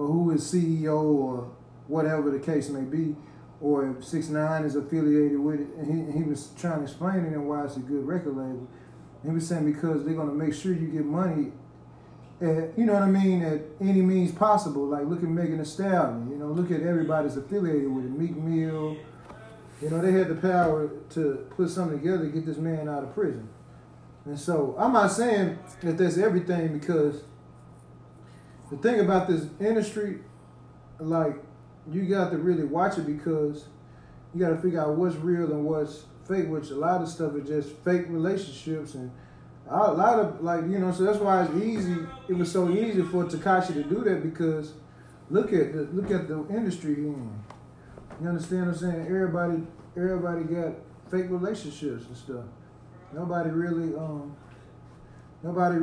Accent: American